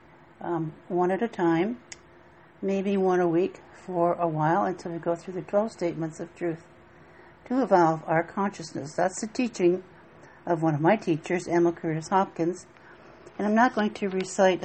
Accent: American